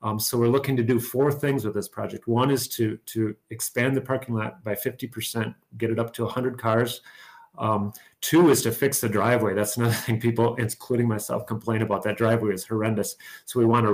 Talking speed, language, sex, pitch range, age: 210 wpm, English, male, 110-125 Hz, 40-59